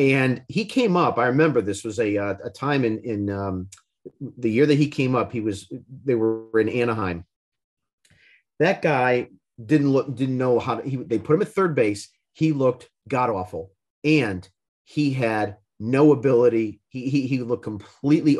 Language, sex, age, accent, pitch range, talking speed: English, male, 40-59, American, 110-150 Hz, 180 wpm